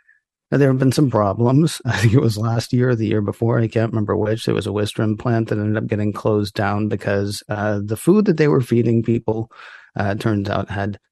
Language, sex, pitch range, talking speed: English, male, 105-120 Hz, 230 wpm